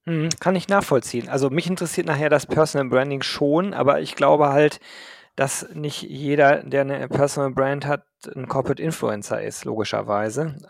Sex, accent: male, German